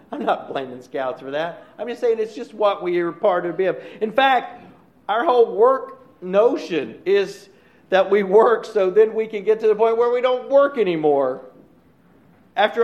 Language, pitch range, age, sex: English, 185-230 Hz, 50-69, male